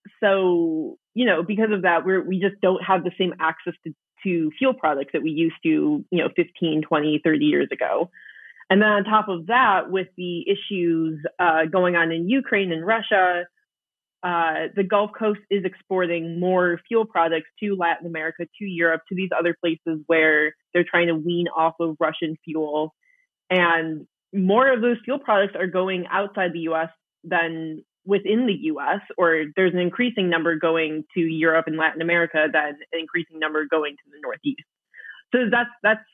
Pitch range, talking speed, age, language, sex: 160-195 Hz, 180 wpm, 20-39, English, female